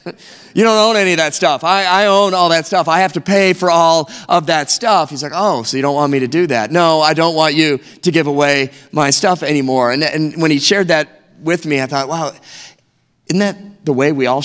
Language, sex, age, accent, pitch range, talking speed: English, male, 30-49, American, 135-185 Hz, 255 wpm